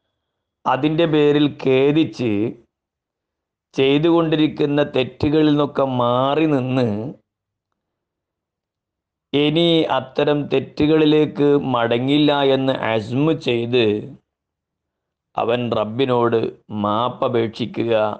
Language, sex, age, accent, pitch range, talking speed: Malayalam, male, 30-49, native, 105-135 Hz, 55 wpm